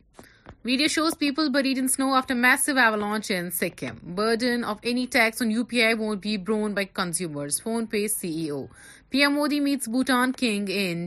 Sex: female